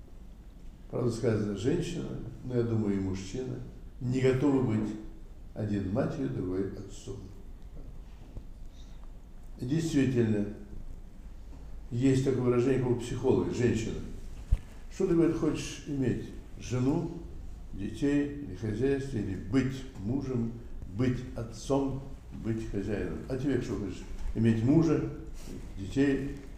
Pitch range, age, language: 100-130 Hz, 60-79, Russian